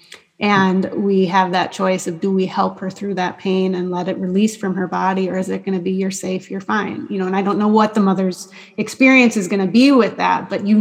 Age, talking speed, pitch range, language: 30-49, 265 wpm, 190-225 Hz, English